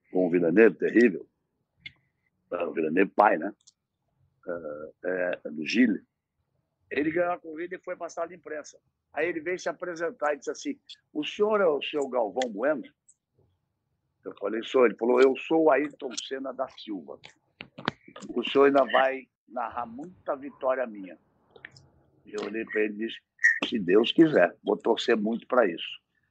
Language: Portuguese